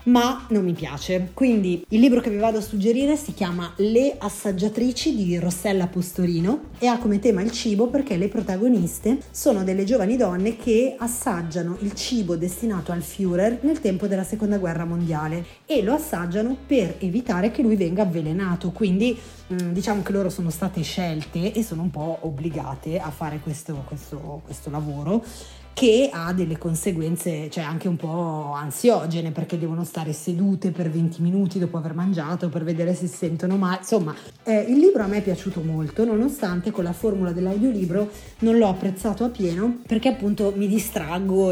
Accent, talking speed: native, 170 wpm